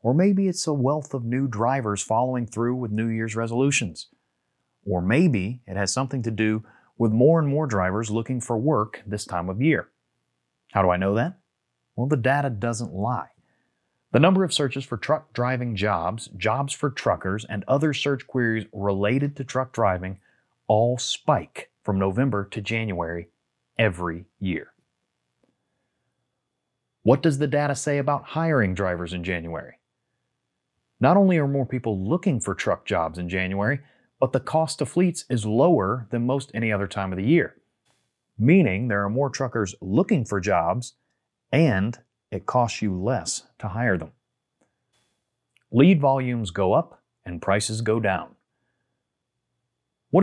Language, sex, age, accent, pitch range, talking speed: English, male, 30-49, American, 100-135 Hz, 155 wpm